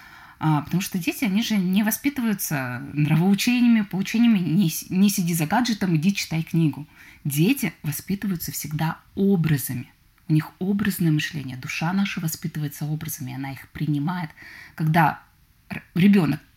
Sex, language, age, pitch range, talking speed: female, Russian, 20-39, 150-185 Hz, 125 wpm